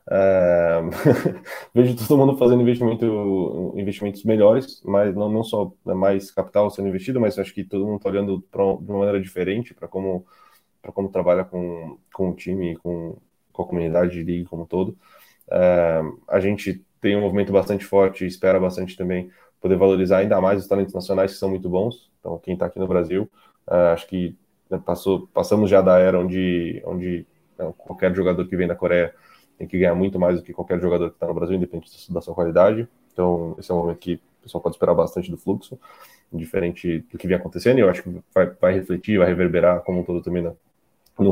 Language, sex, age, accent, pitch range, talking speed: Portuguese, male, 10-29, Brazilian, 90-100 Hz, 205 wpm